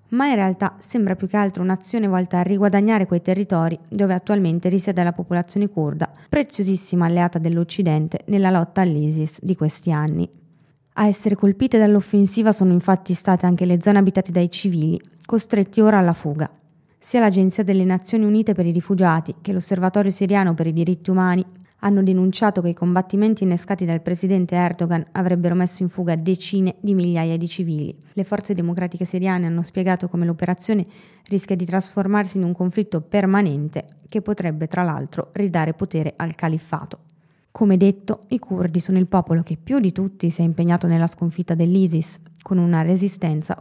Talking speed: 165 wpm